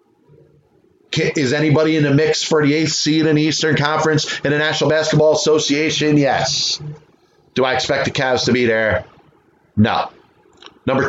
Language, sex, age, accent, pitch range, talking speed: English, male, 30-49, American, 120-150 Hz, 155 wpm